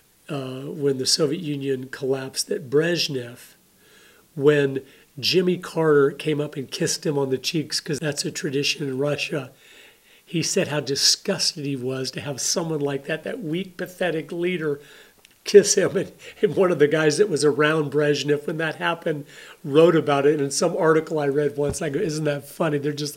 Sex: male